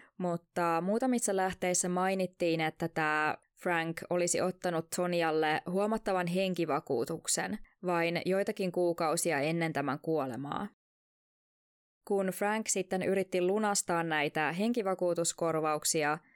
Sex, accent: female, native